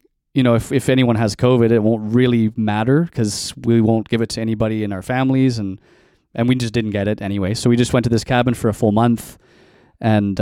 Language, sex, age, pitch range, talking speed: English, male, 20-39, 105-120 Hz, 235 wpm